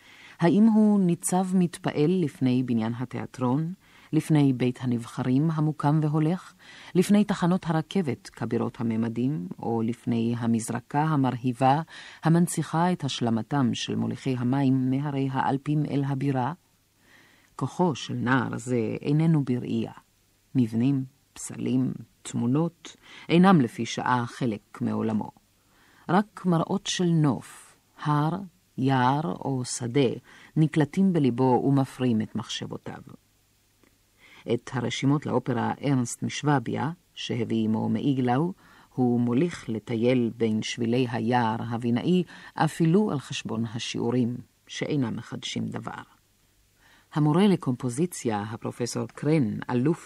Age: 40-59